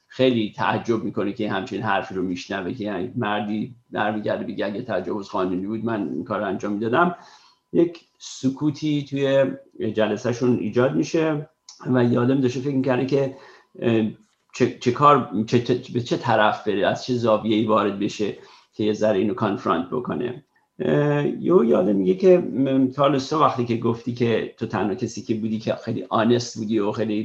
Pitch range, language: 110-135 Hz, Persian